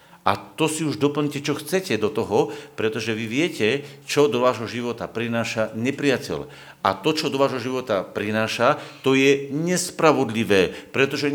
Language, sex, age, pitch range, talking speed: Slovak, male, 50-69, 125-150 Hz, 155 wpm